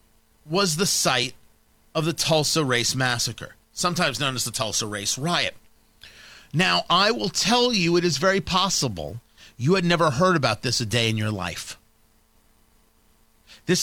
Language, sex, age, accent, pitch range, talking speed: English, male, 40-59, American, 125-175 Hz, 155 wpm